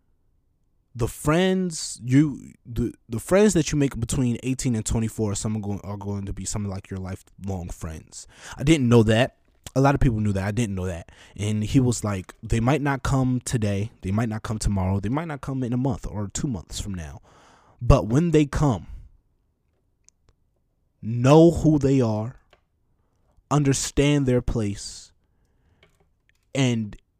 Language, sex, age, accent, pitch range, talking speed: English, male, 20-39, American, 95-125 Hz, 170 wpm